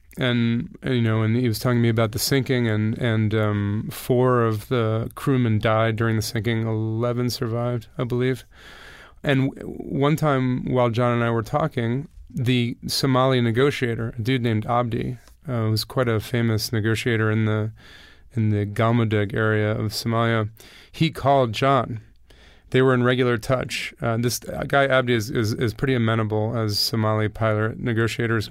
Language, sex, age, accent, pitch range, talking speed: English, male, 30-49, American, 110-130 Hz, 165 wpm